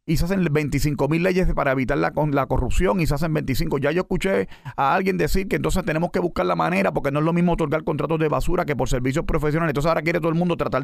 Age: 40-59